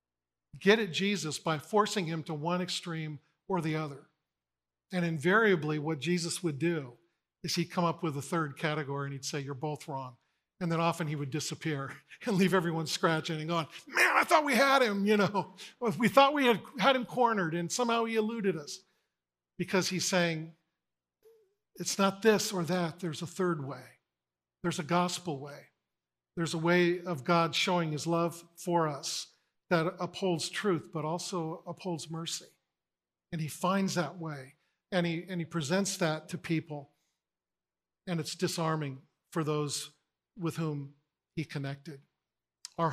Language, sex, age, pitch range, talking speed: English, male, 50-69, 155-185 Hz, 170 wpm